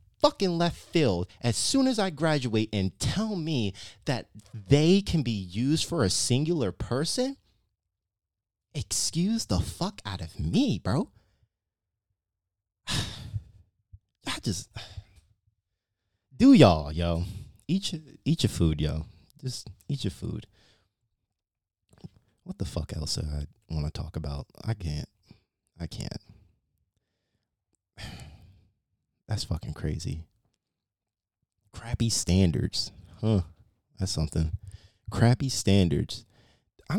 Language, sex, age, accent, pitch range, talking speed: English, male, 30-49, American, 95-115 Hz, 105 wpm